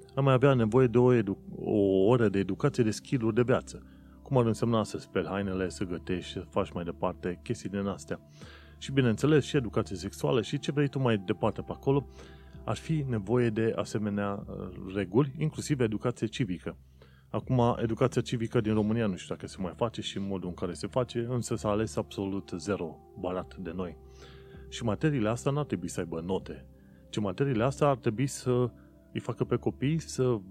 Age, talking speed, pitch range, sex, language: 30-49, 195 wpm, 95-125 Hz, male, Romanian